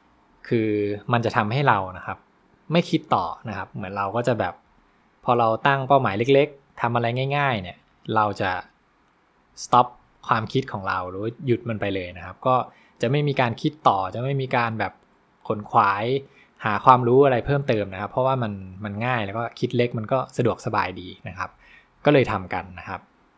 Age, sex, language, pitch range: 20-39, male, English, 105-130 Hz